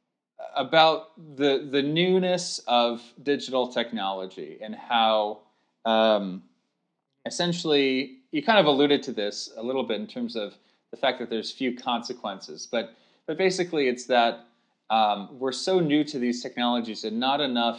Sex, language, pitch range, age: male, English, 105-140 Hz, 30-49